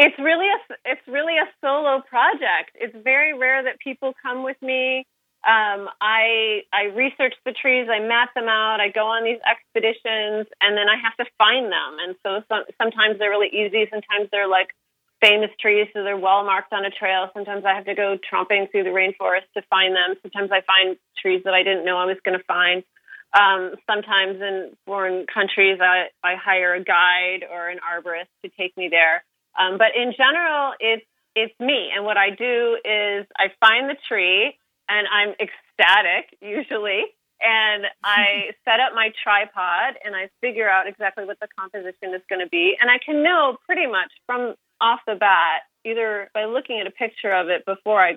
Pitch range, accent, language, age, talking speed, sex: 190-230 Hz, American, English, 30-49, 195 wpm, female